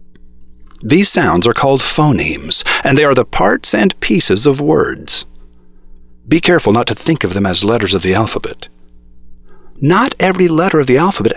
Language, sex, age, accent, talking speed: English, male, 50-69, American, 170 wpm